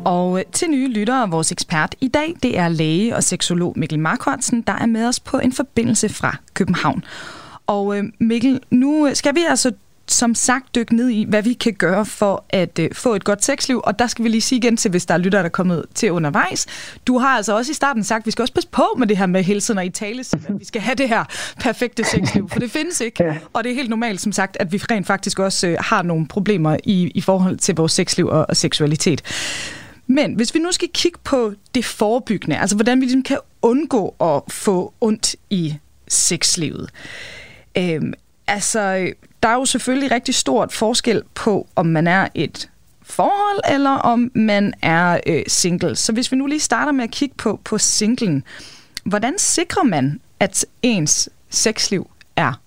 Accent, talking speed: native, 205 wpm